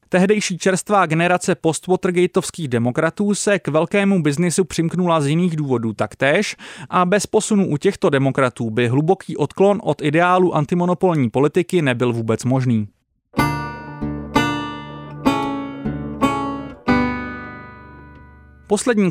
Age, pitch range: 30-49, 135-190 Hz